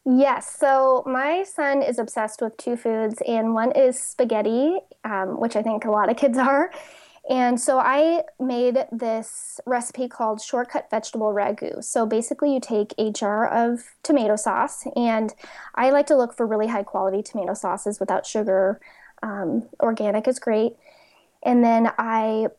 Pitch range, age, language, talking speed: 220-280 Hz, 20-39, English, 160 wpm